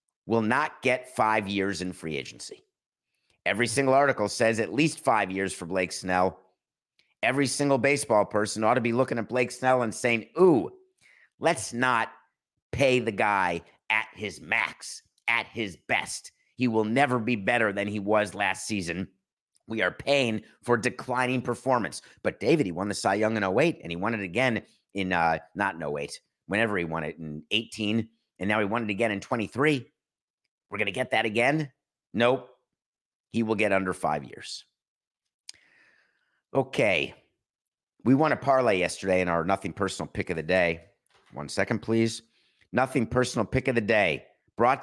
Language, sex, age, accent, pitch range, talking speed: English, male, 50-69, American, 95-125 Hz, 175 wpm